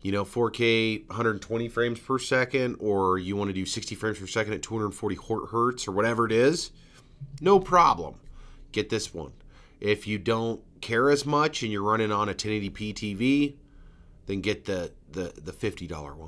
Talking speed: 175 wpm